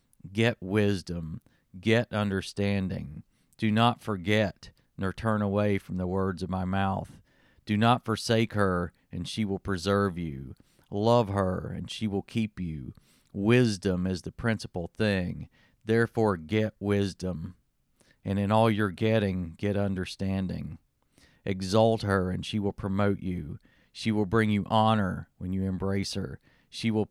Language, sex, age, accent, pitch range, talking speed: English, male, 40-59, American, 95-110 Hz, 145 wpm